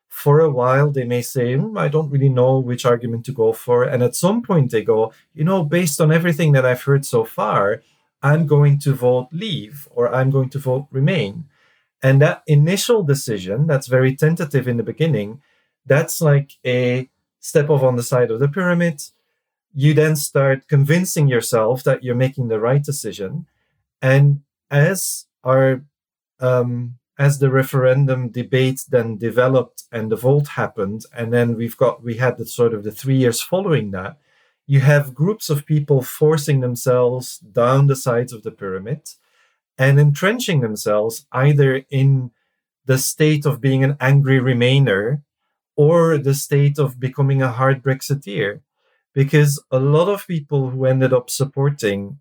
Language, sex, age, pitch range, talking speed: English, male, 40-59, 125-150 Hz, 165 wpm